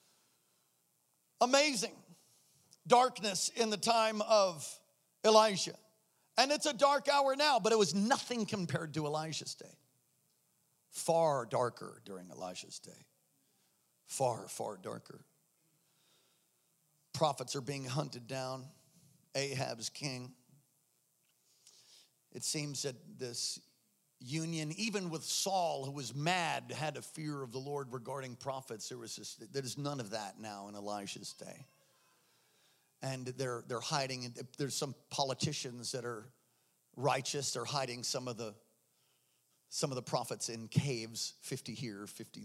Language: English